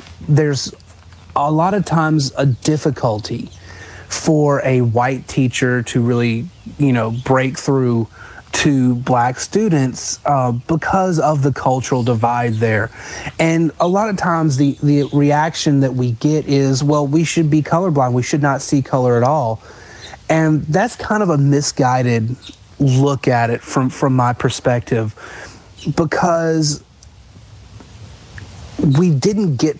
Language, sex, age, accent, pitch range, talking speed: English, male, 30-49, American, 120-155 Hz, 135 wpm